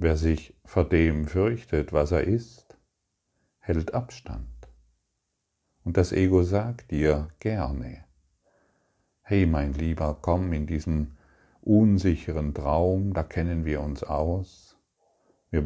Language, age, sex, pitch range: German, 50-69, male, 75-90 Hz